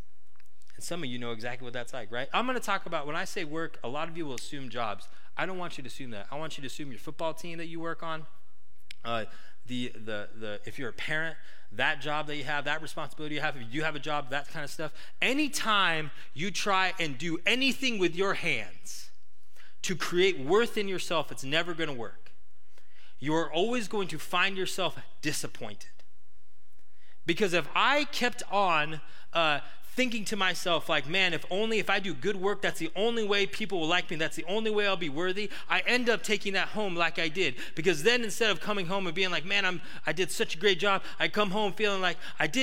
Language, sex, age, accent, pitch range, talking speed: English, male, 30-49, American, 155-215 Hz, 230 wpm